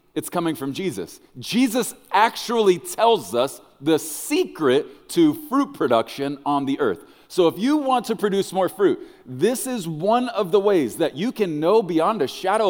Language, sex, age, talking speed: English, male, 40-59, 175 wpm